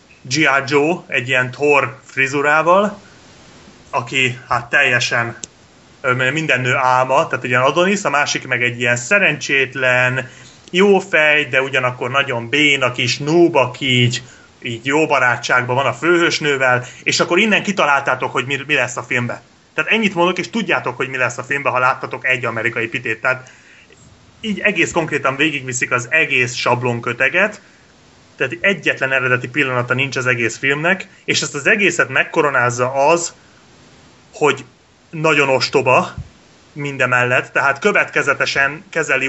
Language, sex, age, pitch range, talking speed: Hungarian, male, 30-49, 125-160 Hz, 140 wpm